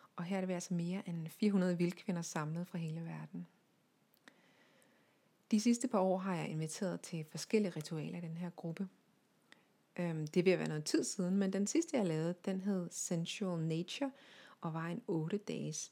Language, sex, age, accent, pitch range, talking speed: Danish, female, 30-49, native, 170-215 Hz, 175 wpm